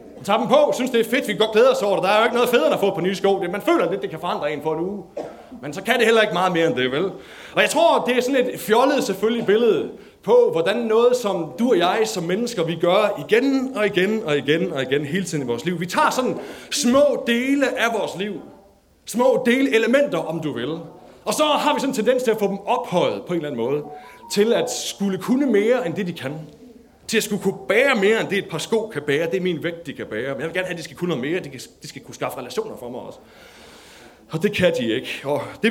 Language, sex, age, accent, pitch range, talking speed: Danish, male, 30-49, native, 170-245 Hz, 280 wpm